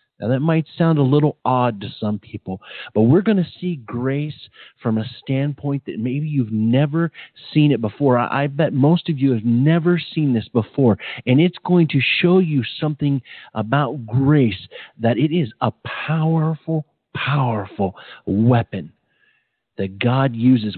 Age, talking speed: 40-59, 160 wpm